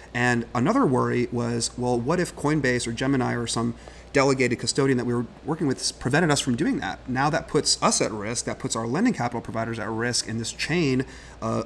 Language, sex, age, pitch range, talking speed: English, male, 30-49, 115-135 Hz, 215 wpm